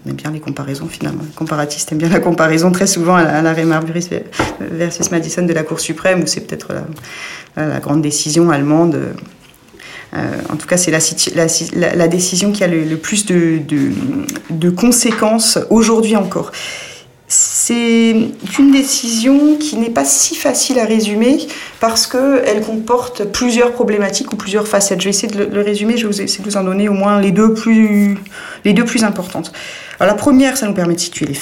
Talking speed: 190 wpm